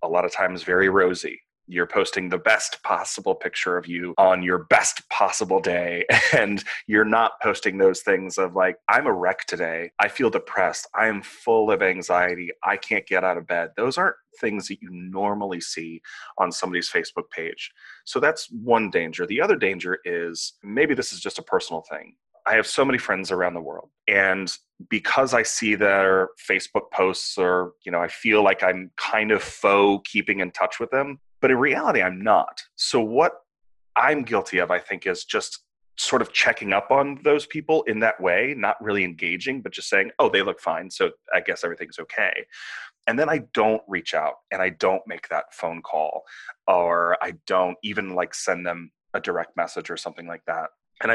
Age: 30-49